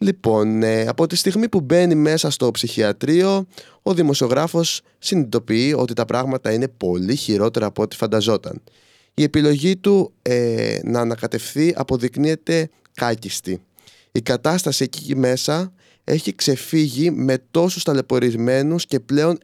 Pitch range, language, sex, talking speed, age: 120-170 Hz, Greek, male, 120 wpm, 20-39